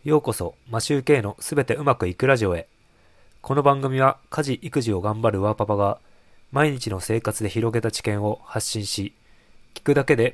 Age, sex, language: 20-39, male, Japanese